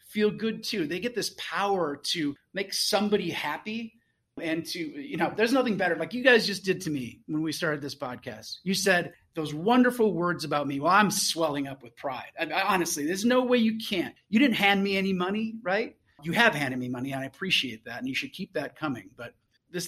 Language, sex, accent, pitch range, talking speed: English, male, American, 145-200 Hz, 220 wpm